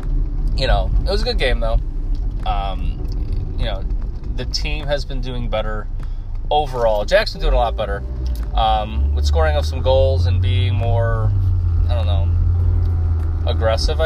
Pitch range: 75-110 Hz